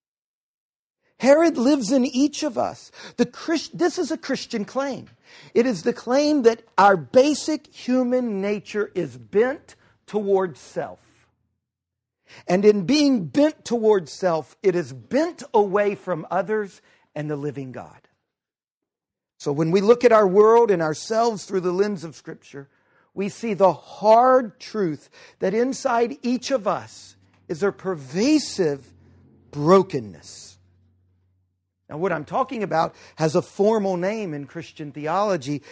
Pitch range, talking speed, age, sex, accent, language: 155-240 Hz, 140 wpm, 50-69, male, American, English